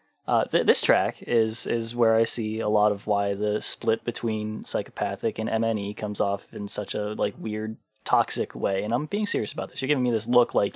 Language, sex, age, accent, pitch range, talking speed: English, male, 20-39, American, 110-140 Hz, 210 wpm